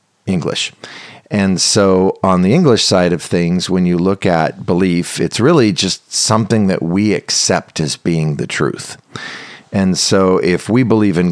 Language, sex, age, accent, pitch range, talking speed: English, male, 50-69, American, 85-100 Hz, 165 wpm